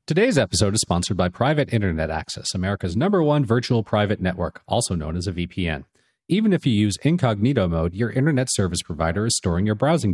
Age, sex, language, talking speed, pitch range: 40-59, male, English, 195 wpm, 95-130 Hz